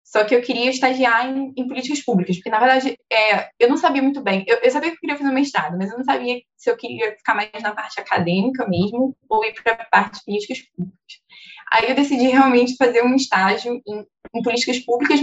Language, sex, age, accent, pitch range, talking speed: Portuguese, female, 10-29, Brazilian, 195-260 Hz, 235 wpm